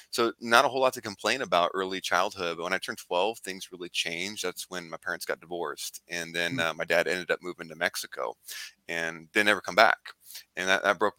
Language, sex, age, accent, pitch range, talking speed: English, male, 20-39, American, 85-100 Hz, 230 wpm